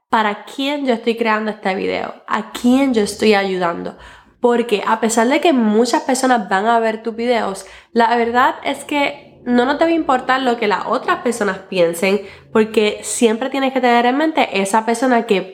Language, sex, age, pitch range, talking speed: Spanish, female, 20-39, 195-250 Hz, 185 wpm